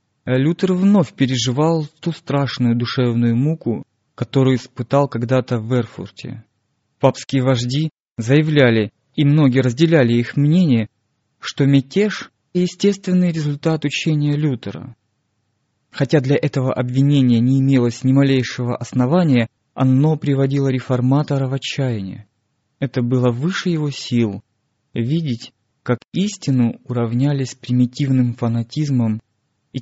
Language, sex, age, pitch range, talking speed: Russian, male, 20-39, 120-145 Hz, 105 wpm